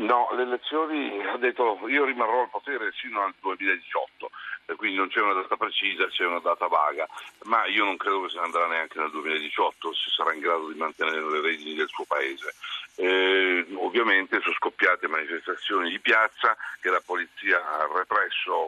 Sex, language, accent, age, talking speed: male, Italian, native, 50-69, 180 wpm